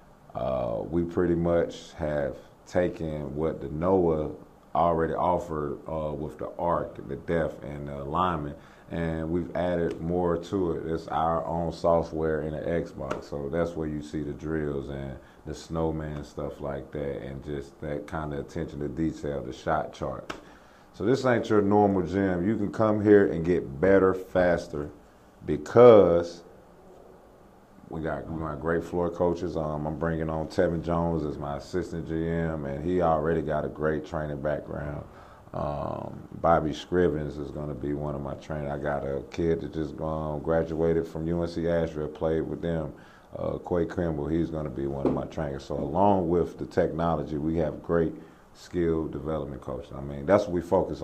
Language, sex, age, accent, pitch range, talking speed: English, male, 40-59, American, 75-85 Hz, 175 wpm